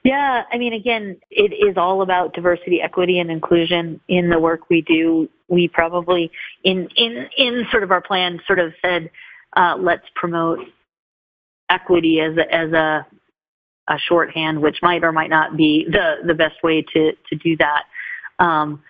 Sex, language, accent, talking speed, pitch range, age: female, English, American, 170 wpm, 160-185 Hz, 30-49